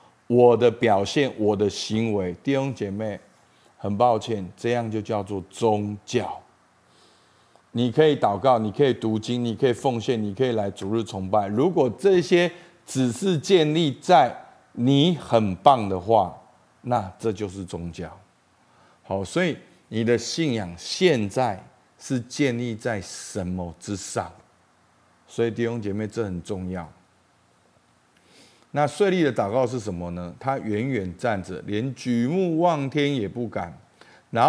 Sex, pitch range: male, 100-130 Hz